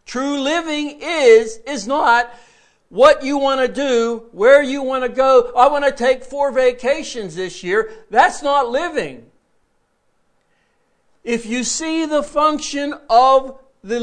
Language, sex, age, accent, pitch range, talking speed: English, male, 60-79, American, 185-280 Hz, 140 wpm